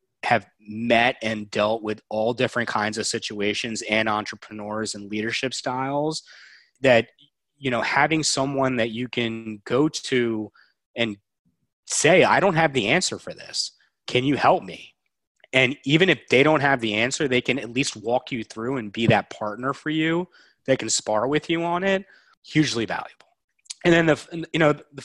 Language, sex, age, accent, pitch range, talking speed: English, male, 30-49, American, 105-130 Hz, 175 wpm